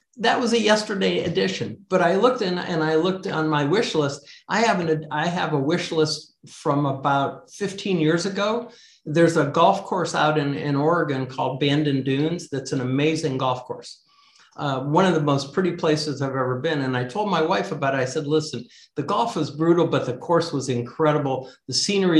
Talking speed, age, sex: 205 wpm, 60-79, male